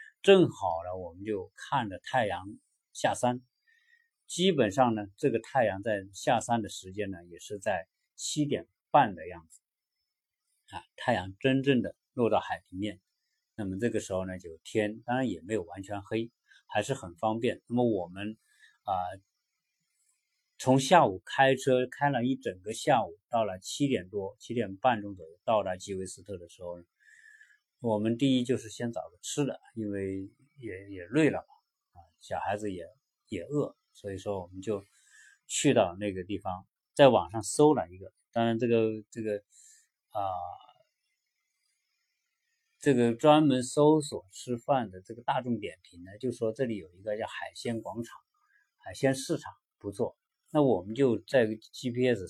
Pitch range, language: 100-135 Hz, Chinese